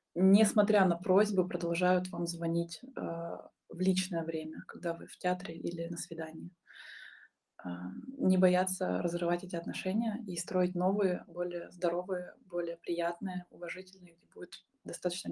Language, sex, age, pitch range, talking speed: Russian, female, 20-39, 175-195 Hz, 135 wpm